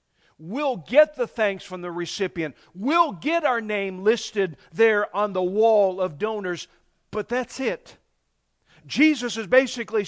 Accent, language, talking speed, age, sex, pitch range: American, English, 145 wpm, 50-69, male, 200-265 Hz